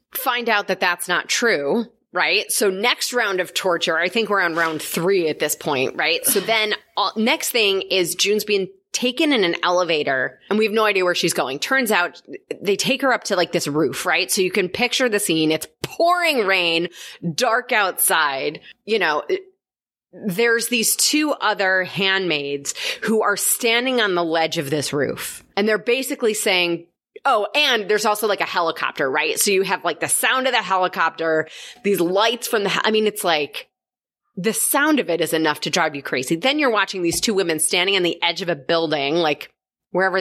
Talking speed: 200 wpm